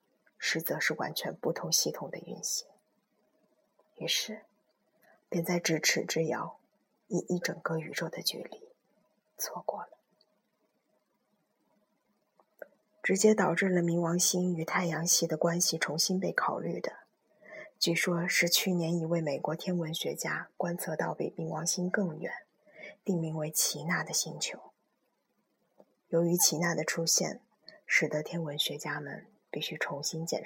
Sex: female